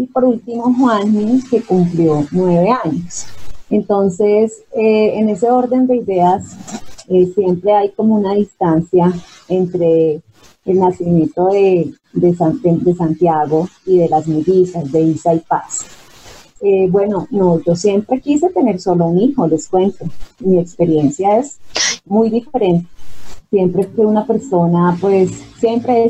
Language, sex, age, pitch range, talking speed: Spanish, female, 30-49, 170-210 Hz, 140 wpm